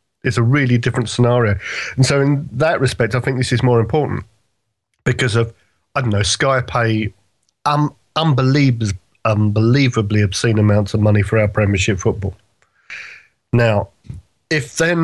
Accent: British